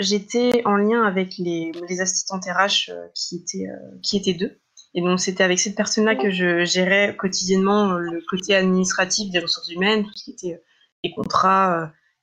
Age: 20-39